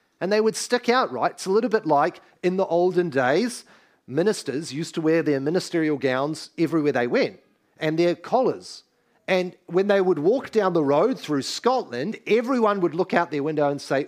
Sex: male